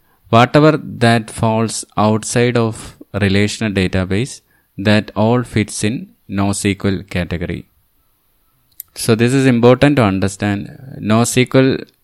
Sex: male